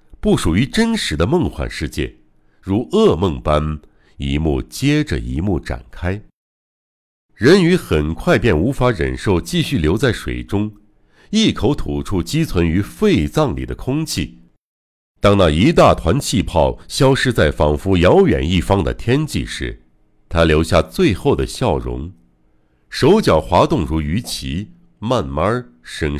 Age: 60-79